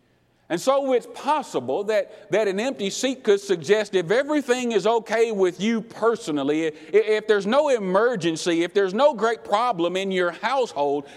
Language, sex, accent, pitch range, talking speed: English, male, American, 150-235 Hz, 165 wpm